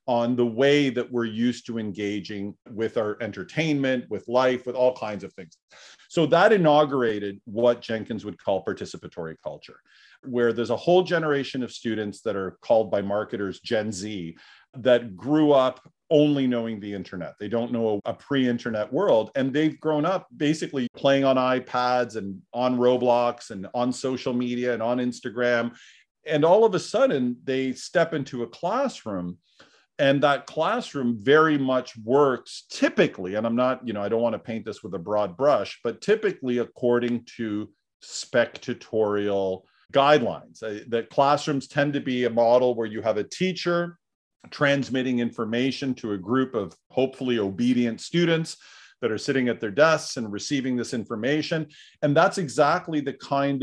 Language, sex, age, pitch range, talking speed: English, male, 40-59, 115-140 Hz, 165 wpm